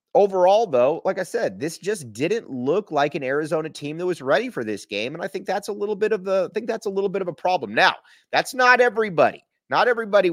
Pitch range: 120-200 Hz